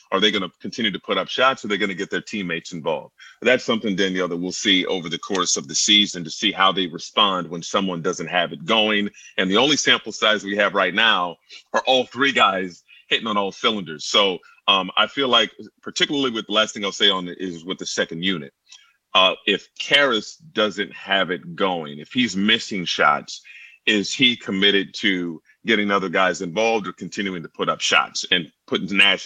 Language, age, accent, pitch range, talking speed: English, 30-49, American, 90-105 Hz, 215 wpm